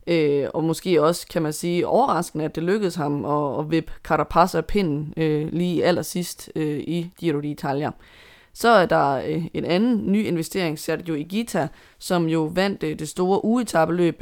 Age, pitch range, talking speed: 20-39, 160-190 Hz, 170 wpm